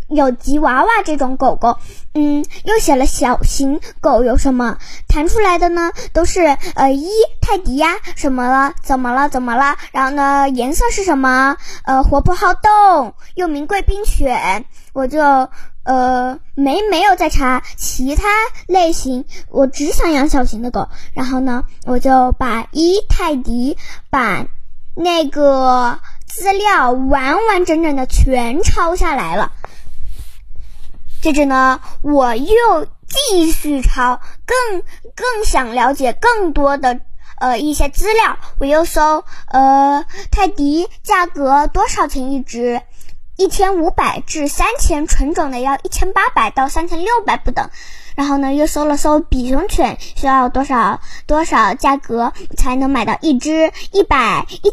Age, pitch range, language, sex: 10-29, 265-365 Hz, Chinese, male